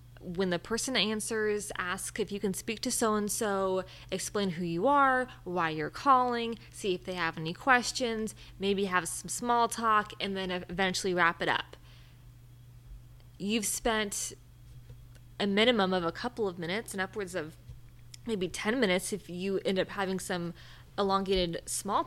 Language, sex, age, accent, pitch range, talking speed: English, female, 20-39, American, 155-205 Hz, 160 wpm